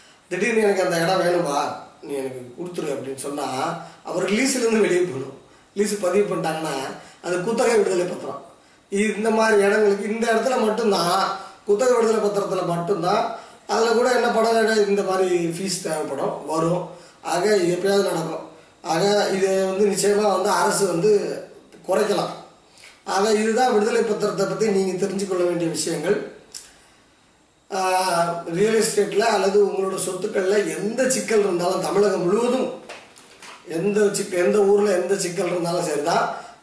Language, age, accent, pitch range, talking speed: Tamil, 20-39, native, 175-210 Hz, 130 wpm